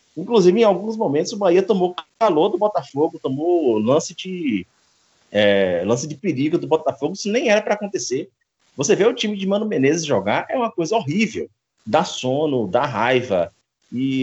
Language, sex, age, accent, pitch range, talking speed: Portuguese, male, 30-49, Brazilian, 120-185 Hz, 175 wpm